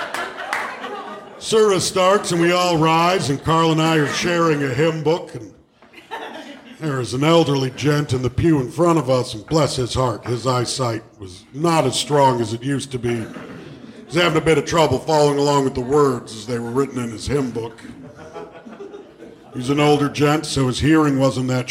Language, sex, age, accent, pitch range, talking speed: English, male, 50-69, American, 130-175 Hz, 195 wpm